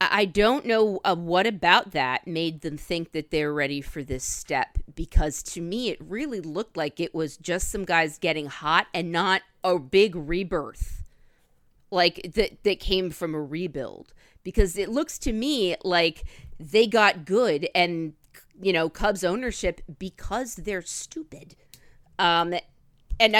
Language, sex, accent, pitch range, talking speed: English, female, American, 165-215 Hz, 155 wpm